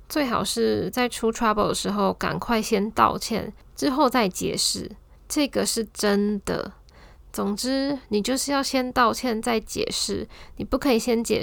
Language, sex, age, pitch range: Chinese, female, 10-29, 200-235 Hz